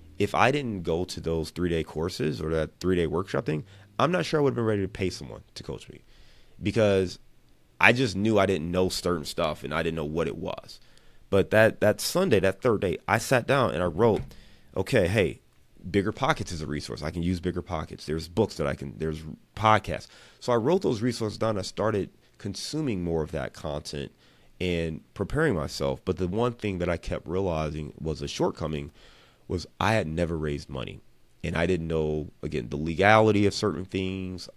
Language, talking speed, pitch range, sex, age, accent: English, 205 wpm, 75-100 Hz, male, 30-49, American